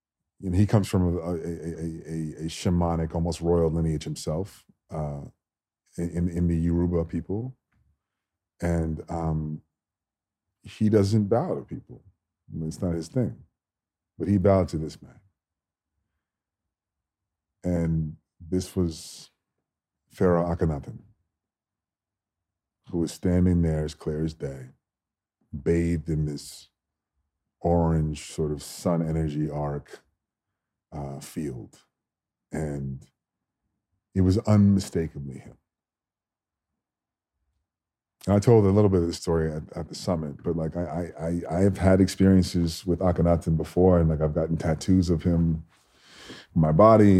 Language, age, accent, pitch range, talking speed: English, 40-59, American, 80-95 Hz, 130 wpm